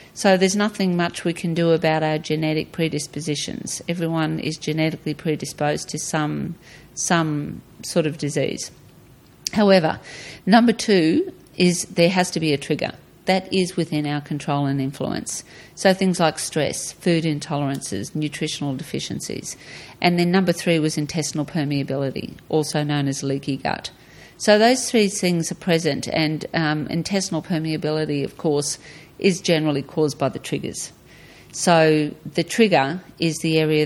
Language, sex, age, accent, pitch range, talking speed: English, female, 50-69, Australian, 145-165 Hz, 145 wpm